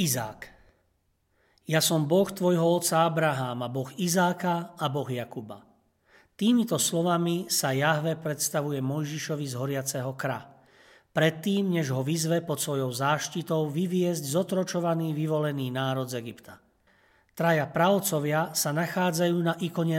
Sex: male